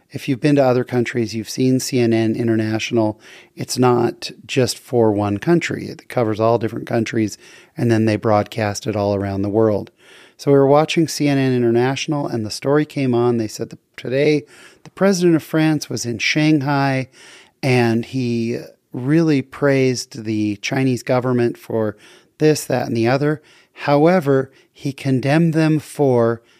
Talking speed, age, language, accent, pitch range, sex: 160 wpm, 40-59, English, American, 115-145 Hz, male